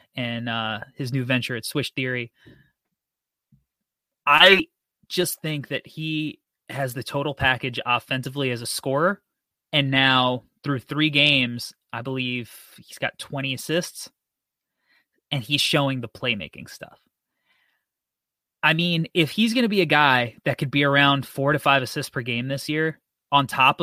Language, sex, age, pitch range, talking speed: English, male, 20-39, 130-165 Hz, 155 wpm